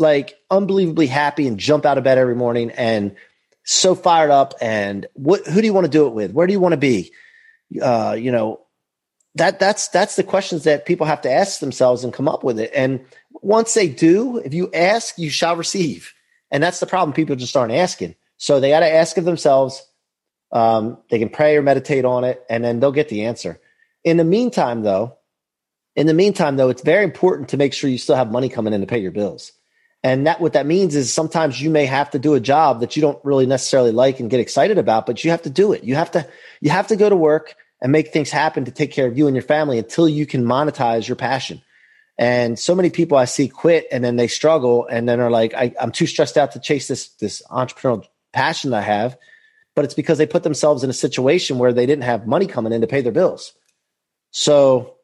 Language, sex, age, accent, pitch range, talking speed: English, male, 30-49, American, 125-170 Hz, 240 wpm